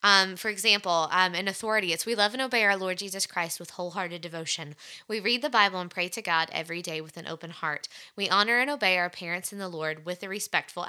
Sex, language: female, English